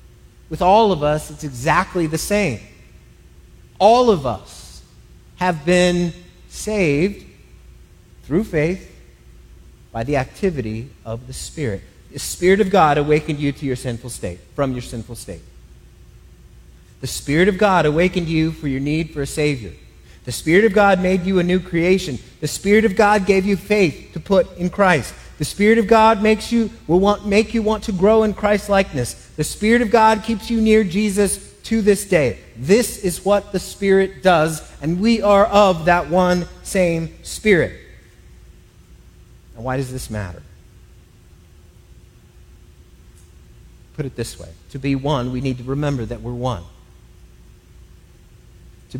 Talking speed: 155 wpm